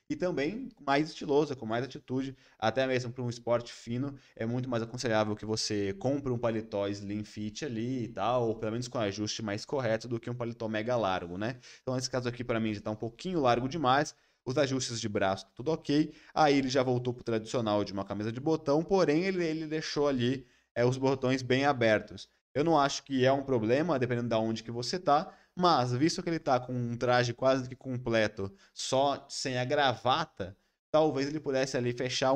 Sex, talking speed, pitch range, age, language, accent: male, 210 wpm, 115-140 Hz, 20-39, Portuguese, Brazilian